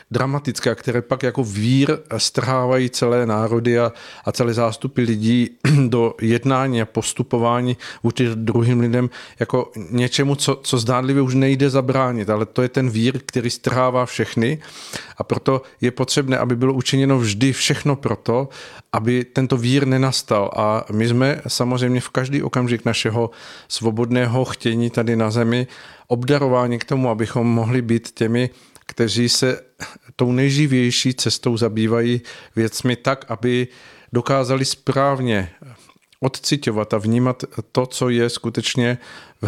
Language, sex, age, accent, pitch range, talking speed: Czech, male, 40-59, native, 115-130 Hz, 135 wpm